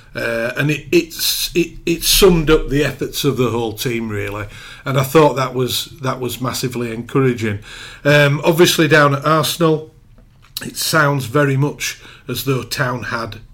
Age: 40-59